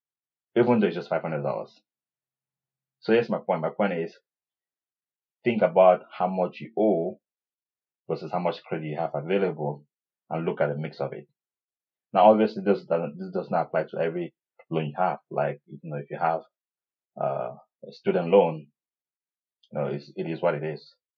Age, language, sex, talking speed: 30-49, English, male, 175 wpm